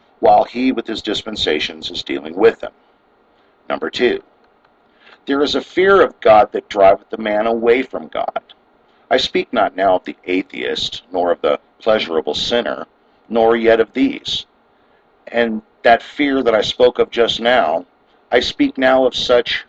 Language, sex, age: English, male, 50-69